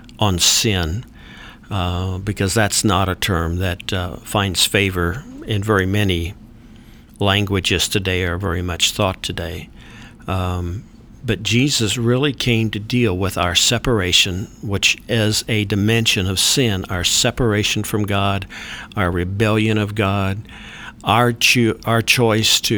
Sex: male